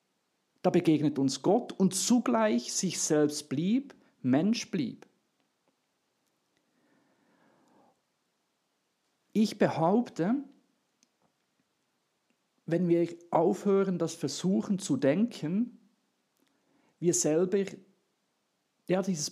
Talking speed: 70 wpm